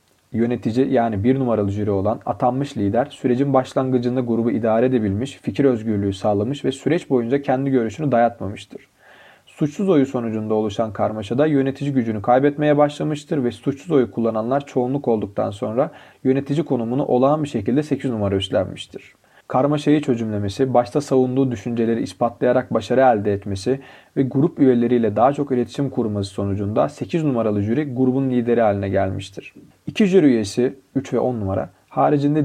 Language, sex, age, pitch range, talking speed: Turkish, male, 40-59, 110-135 Hz, 145 wpm